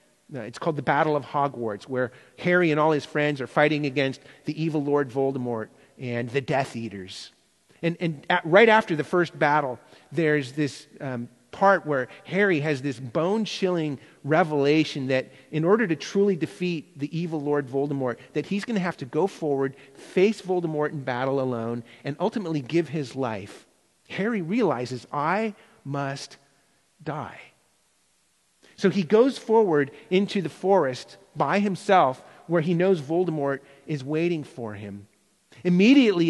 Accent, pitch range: American, 140-185 Hz